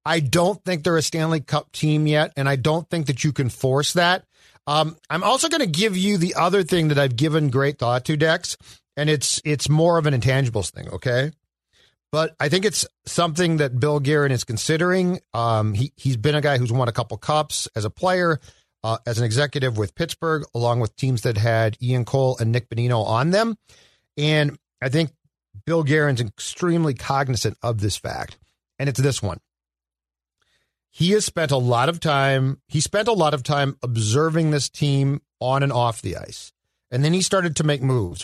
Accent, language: American, English